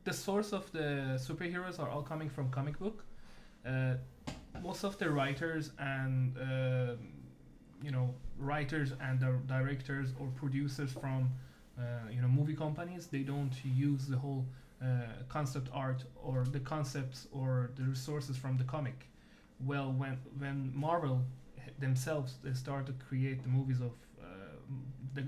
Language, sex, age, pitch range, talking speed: English, male, 20-39, 130-145 Hz, 150 wpm